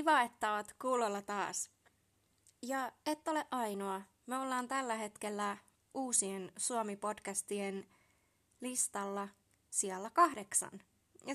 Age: 20-39